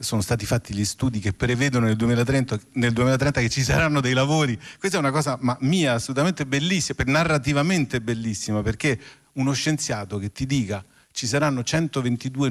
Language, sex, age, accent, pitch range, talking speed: Italian, male, 40-59, native, 115-140 Hz, 170 wpm